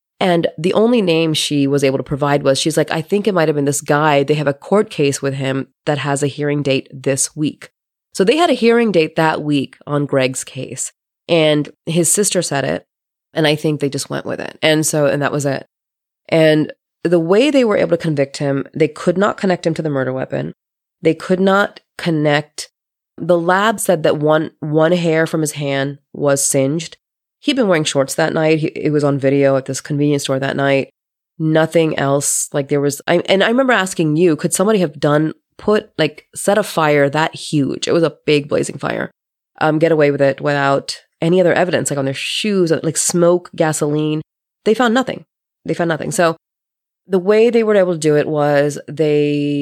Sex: female